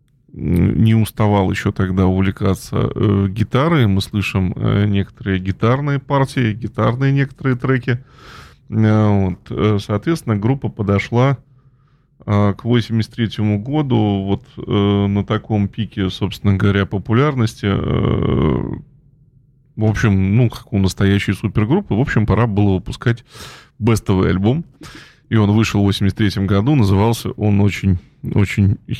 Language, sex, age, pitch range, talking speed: Russian, male, 20-39, 100-120 Hz, 110 wpm